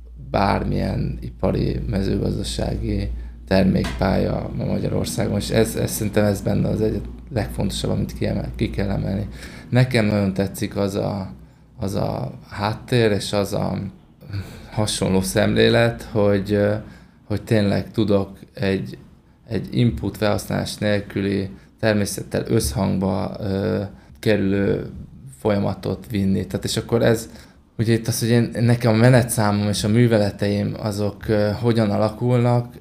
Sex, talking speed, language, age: male, 120 wpm, Hungarian, 20-39